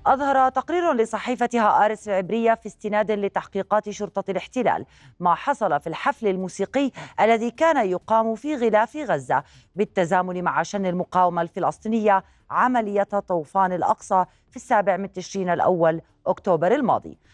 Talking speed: 125 wpm